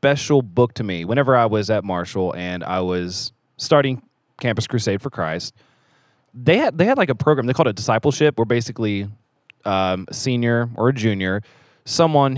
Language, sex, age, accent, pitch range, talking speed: English, male, 20-39, American, 100-135 Hz, 185 wpm